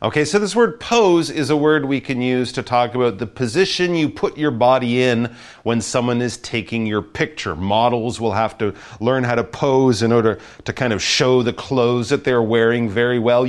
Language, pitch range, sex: Chinese, 105-150 Hz, male